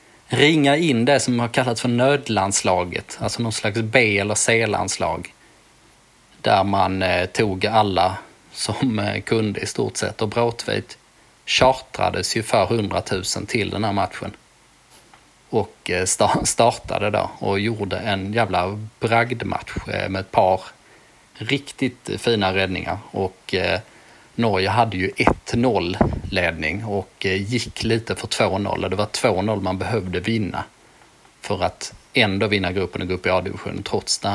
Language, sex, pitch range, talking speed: Swedish, male, 95-120 Hz, 140 wpm